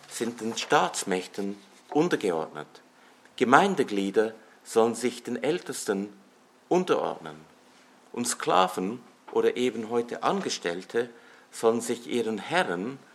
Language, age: English, 50-69